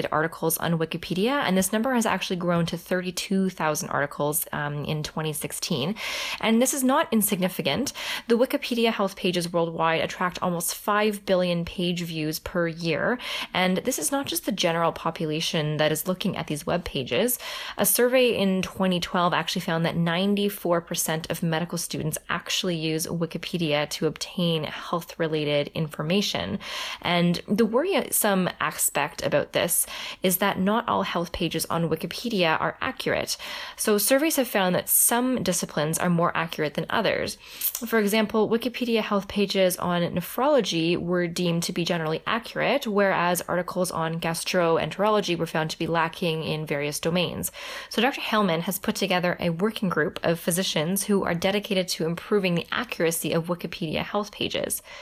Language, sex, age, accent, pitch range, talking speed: English, female, 20-39, American, 165-210 Hz, 155 wpm